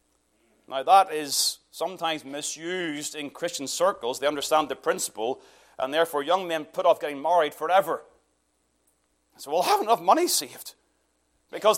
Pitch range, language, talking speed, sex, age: 155-255 Hz, English, 145 wpm, male, 30-49